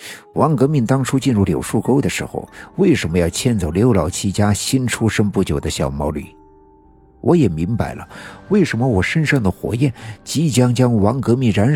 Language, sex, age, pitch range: Chinese, male, 50-69, 90-125 Hz